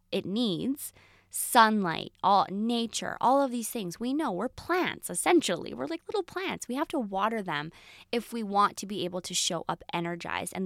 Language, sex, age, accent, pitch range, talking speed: English, female, 20-39, American, 170-210 Hz, 190 wpm